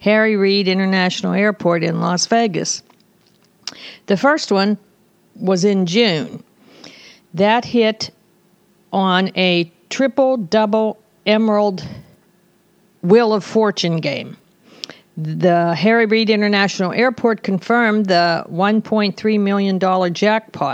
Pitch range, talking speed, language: 180-215 Hz, 95 wpm, English